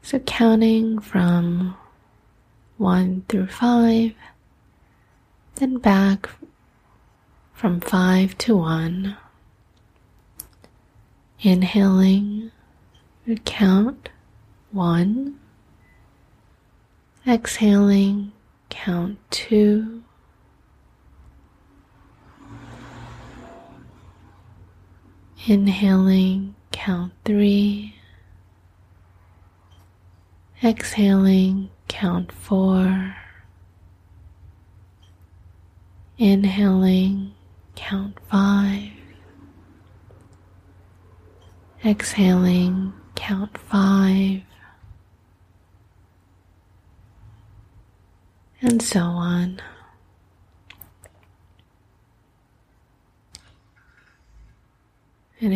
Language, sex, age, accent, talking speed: English, female, 20-39, American, 35 wpm